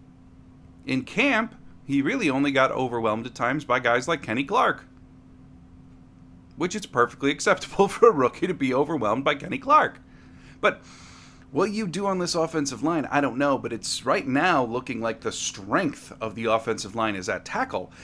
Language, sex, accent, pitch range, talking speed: English, male, American, 105-155 Hz, 175 wpm